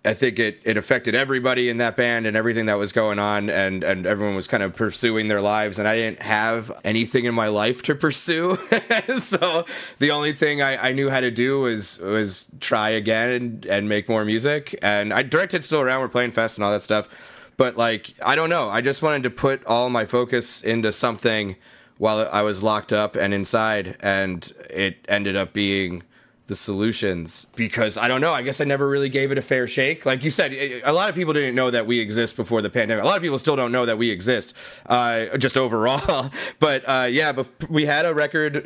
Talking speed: 225 wpm